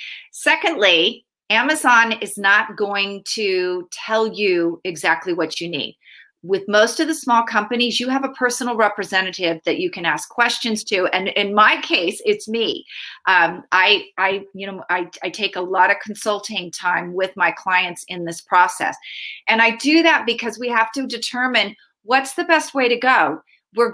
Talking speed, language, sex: 175 wpm, English, female